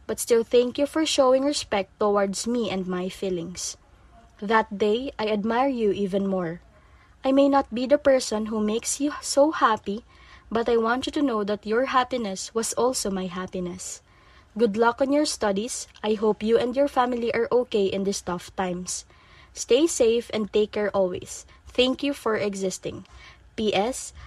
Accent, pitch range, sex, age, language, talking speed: native, 205-280 Hz, female, 20-39, Filipino, 175 wpm